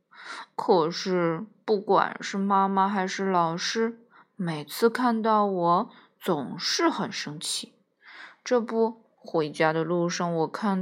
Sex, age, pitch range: female, 20-39, 180-255 Hz